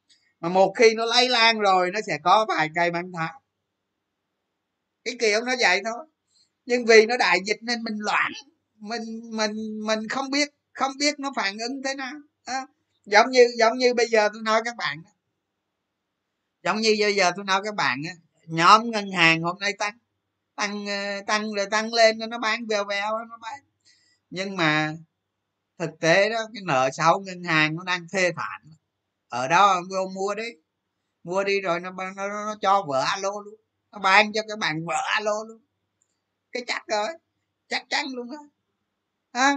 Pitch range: 175-230 Hz